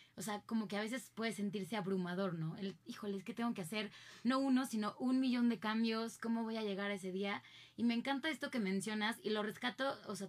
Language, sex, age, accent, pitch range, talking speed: Spanish, female, 20-39, Mexican, 195-240 Hz, 240 wpm